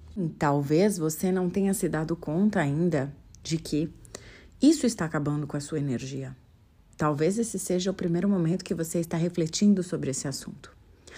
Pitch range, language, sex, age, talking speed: 155-205 Hz, Portuguese, female, 30-49, 160 wpm